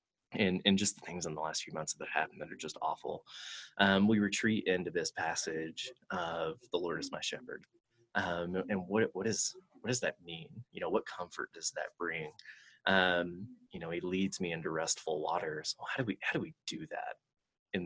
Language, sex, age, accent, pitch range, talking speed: English, male, 20-39, American, 85-100 Hz, 215 wpm